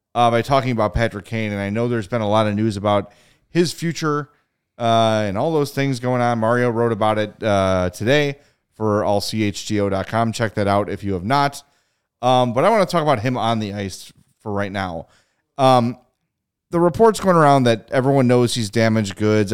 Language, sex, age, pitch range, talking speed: English, male, 30-49, 105-140 Hz, 200 wpm